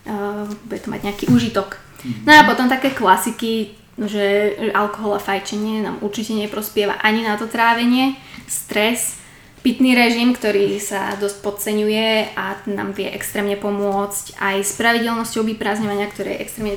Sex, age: female, 20-39